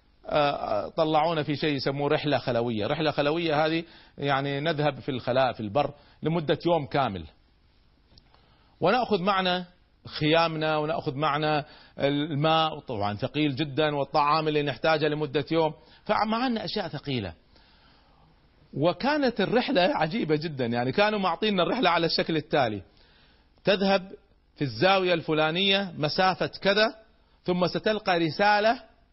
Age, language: 40-59, Arabic